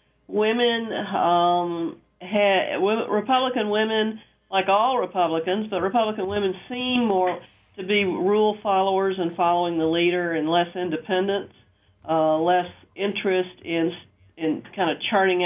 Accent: American